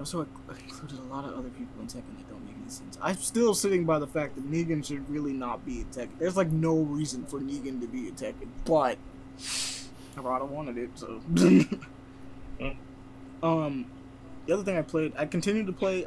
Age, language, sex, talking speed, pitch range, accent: 20-39, English, male, 200 wpm, 130-160 Hz, American